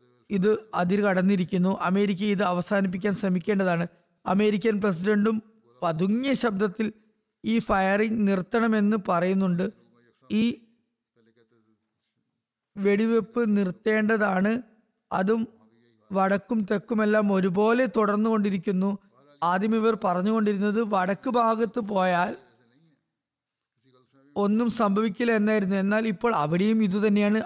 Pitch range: 185-220 Hz